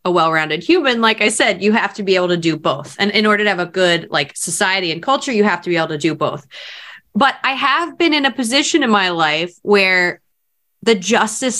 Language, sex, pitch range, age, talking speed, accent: English, female, 180-270 Hz, 20-39, 240 wpm, American